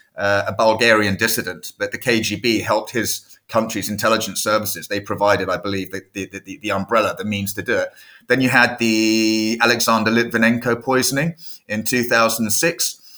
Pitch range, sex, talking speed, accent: 105-125 Hz, male, 160 wpm, British